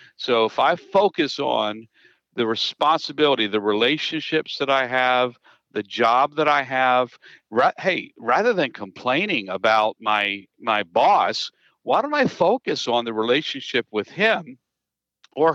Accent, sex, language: American, male, English